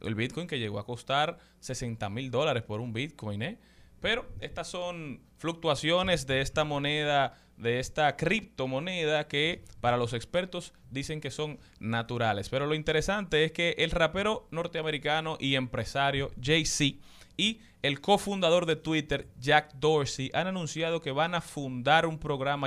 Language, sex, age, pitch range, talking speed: Spanish, male, 30-49, 120-160 Hz, 150 wpm